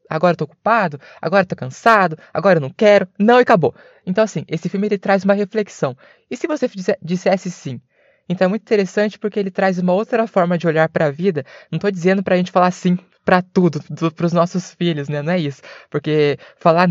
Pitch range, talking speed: 160-195 Hz, 215 wpm